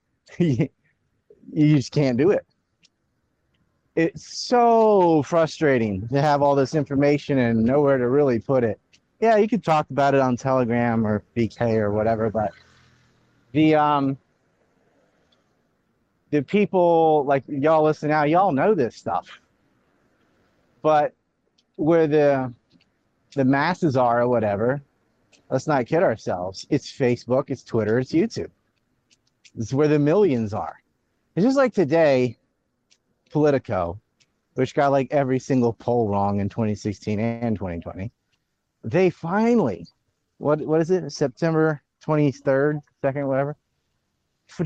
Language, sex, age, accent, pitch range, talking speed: English, male, 30-49, American, 115-155 Hz, 125 wpm